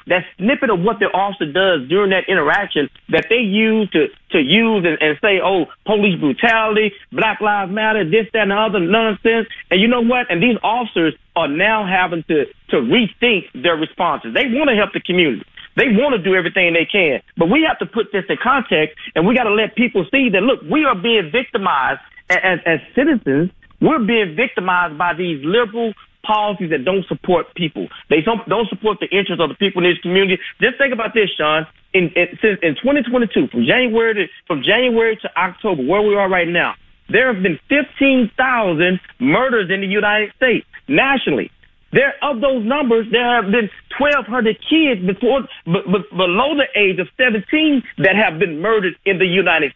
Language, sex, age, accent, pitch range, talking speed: English, male, 40-59, American, 180-240 Hz, 185 wpm